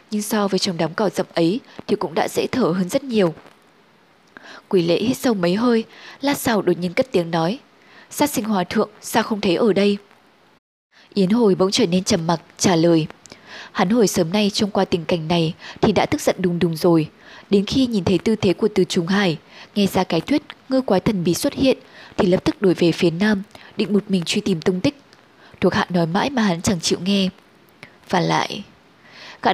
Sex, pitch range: female, 180-215 Hz